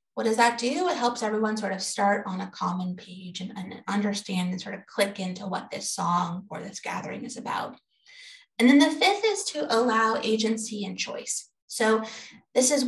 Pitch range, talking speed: 205-250 Hz, 200 wpm